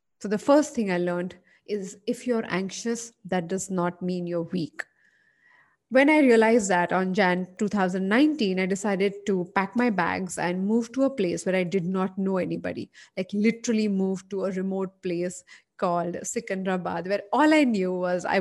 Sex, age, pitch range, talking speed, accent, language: female, 30-49, 180-215 Hz, 180 wpm, Indian, English